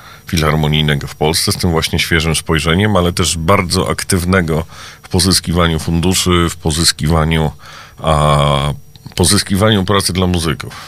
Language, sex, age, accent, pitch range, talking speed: Polish, male, 40-59, native, 80-90 Hz, 120 wpm